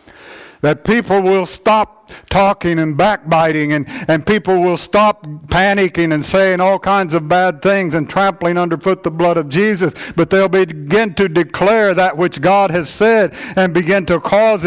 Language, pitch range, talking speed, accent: English, 145-200 Hz, 170 wpm, American